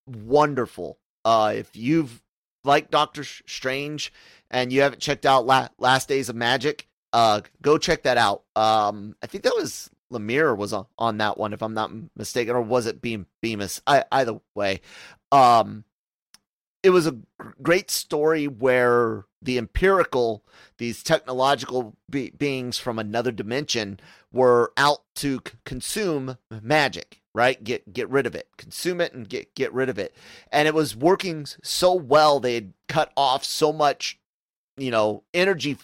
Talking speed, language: 160 wpm, English